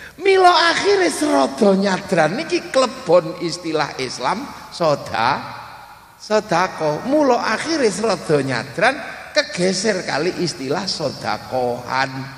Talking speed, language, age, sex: 80 wpm, Indonesian, 50-69, male